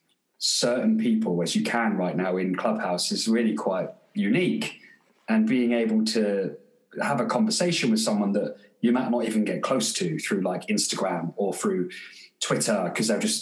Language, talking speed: English, 175 wpm